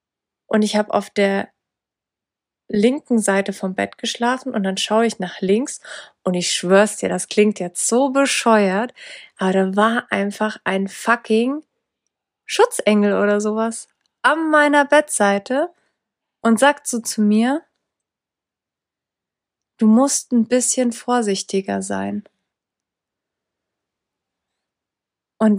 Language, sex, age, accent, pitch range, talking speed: German, female, 30-49, German, 200-240 Hz, 115 wpm